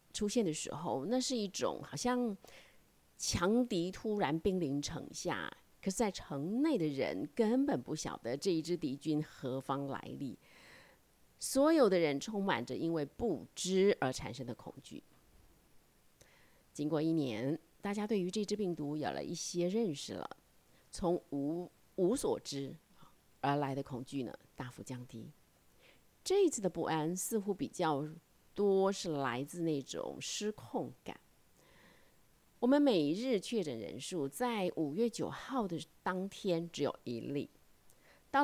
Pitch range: 140-205 Hz